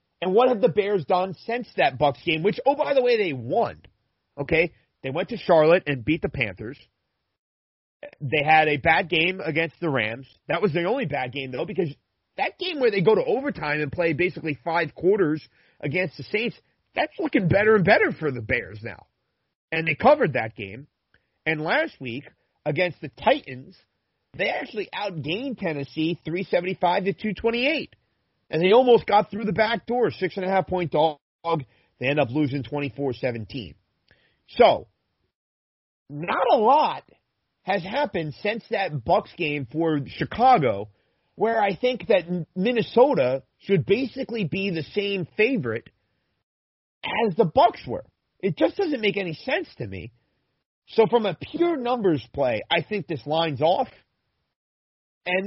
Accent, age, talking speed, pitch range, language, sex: American, 30-49, 160 wpm, 140-215 Hz, English, male